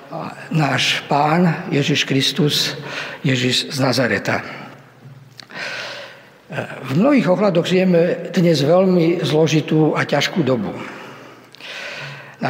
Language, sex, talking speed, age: Slovak, male, 85 wpm, 50-69